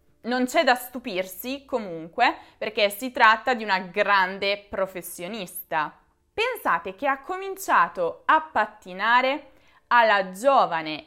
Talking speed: 110 wpm